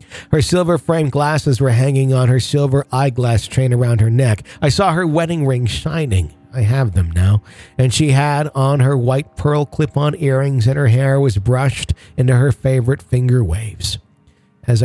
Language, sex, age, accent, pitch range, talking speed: English, male, 40-59, American, 105-145 Hz, 175 wpm